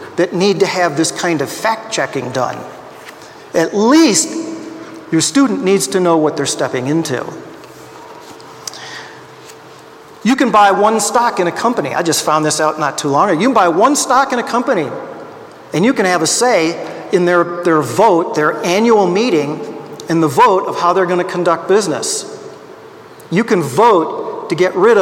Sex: male